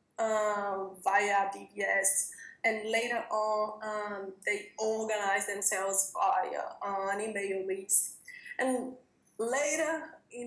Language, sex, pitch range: English, female, 205-255 Hz